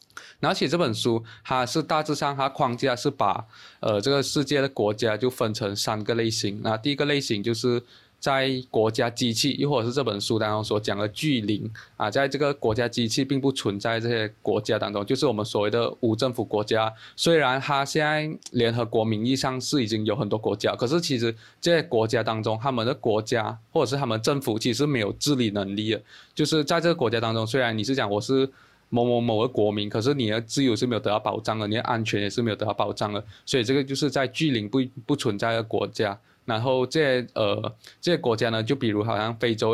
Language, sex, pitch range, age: Chinese, male, 110-135 Hz, 20-39